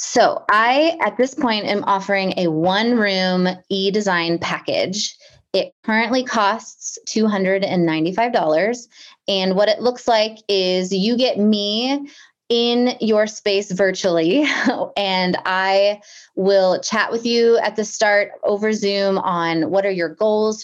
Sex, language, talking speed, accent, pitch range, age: female, English, 130 wpm, American, 180-220 Hz, 20-39